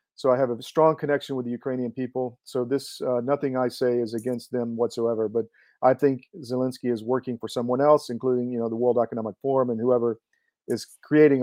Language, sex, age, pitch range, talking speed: English, male, 40-59, 120-145 Hz, 210 wpm